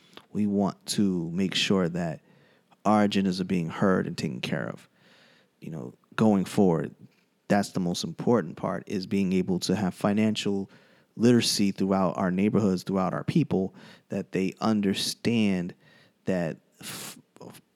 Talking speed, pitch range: 140 wpm, 95-105 Hz